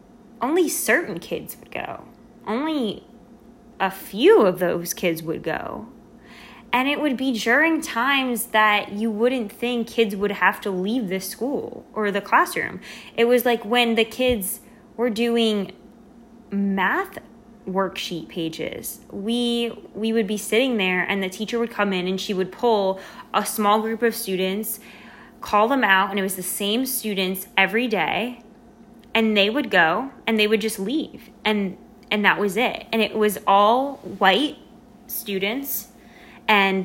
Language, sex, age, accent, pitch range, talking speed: English, female, 20-39, American, 200-235 Hz, 160 wpm